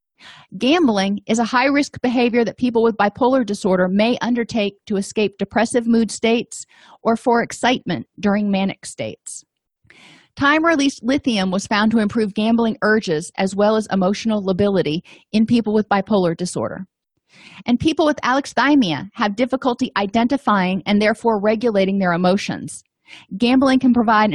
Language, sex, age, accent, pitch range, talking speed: English, female, 40-59, American, 195-245 Hz, 145 wpm